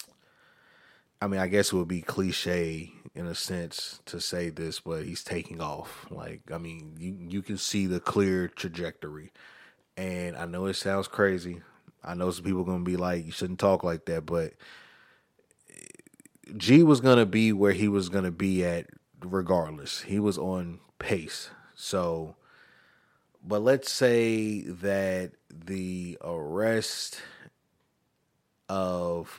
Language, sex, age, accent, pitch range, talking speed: English, male, 30-49, American, 85-100 Hz, 150 wpm